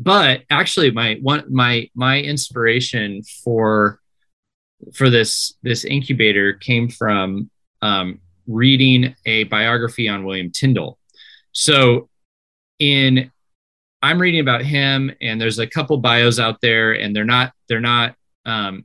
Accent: American